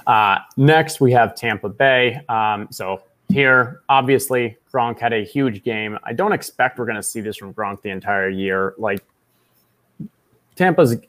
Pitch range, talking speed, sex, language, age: 100-130 Hz, 160 wpm, male, English, 20-39